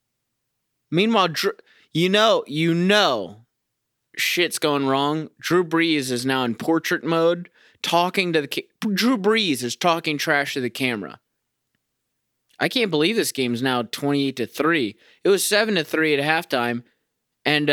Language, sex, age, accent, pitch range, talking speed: English, male, 20-39, American, 120-155 Hz, 150 wpm